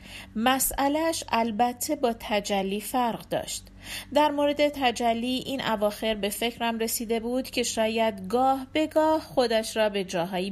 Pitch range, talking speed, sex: 200-255 Hz, 135 wpm, female